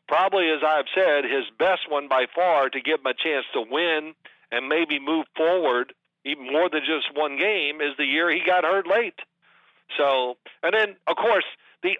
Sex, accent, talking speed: male, American, 200 wpm